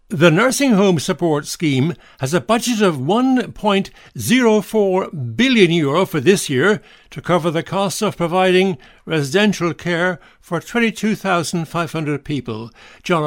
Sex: male